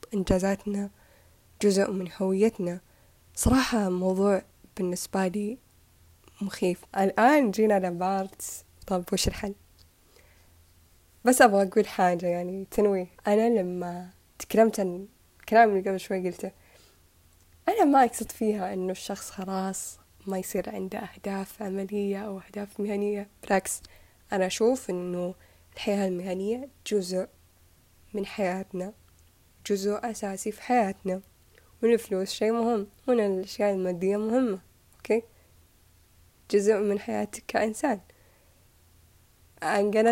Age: 10-29